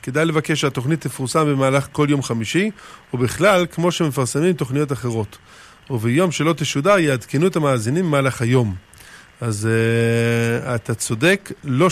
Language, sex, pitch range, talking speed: Hebrew, male, 115-145 Hz, 130 wpm